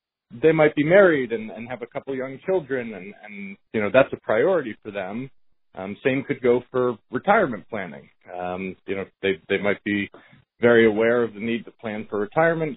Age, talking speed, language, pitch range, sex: 30-49, 205 wpm, English, 100-140 Hz, male